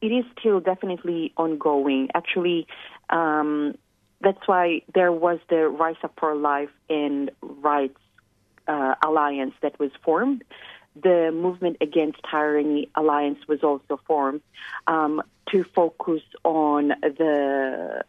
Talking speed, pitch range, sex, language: 120 wpm, 145-175 Hz, female, English